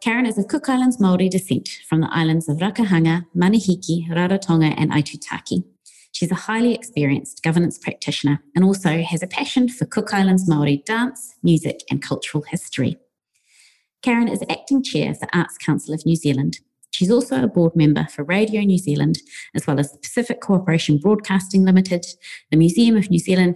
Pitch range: 150-195 Hz